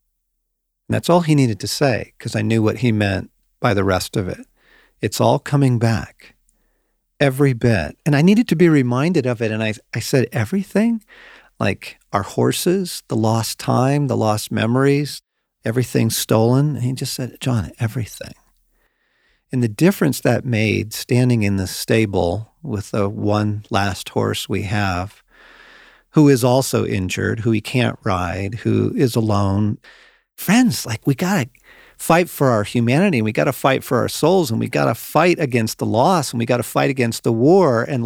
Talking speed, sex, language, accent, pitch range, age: 180 wpm, male, English, American, 110-145 Hz, 50-69